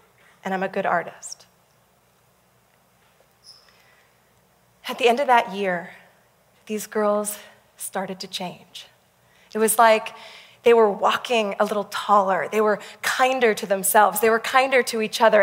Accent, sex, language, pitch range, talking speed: American, female, English, 205-270 Hz, 140 wpm